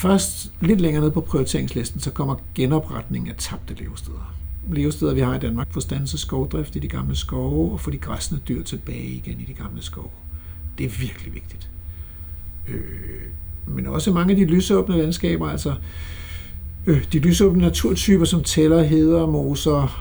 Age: 60-79